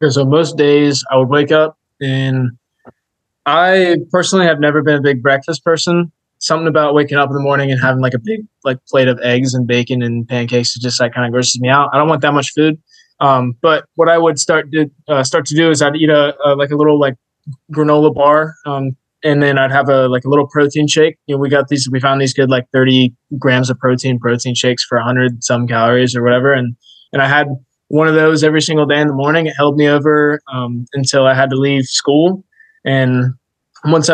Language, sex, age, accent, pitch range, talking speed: English, male, 20-39, American, 125-150 Hz, 235 wpm